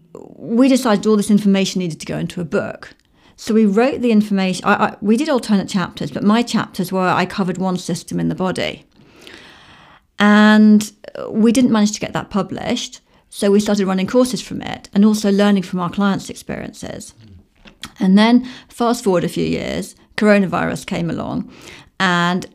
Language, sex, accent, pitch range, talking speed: English, female, British, 185-215 Hz, 170 wpm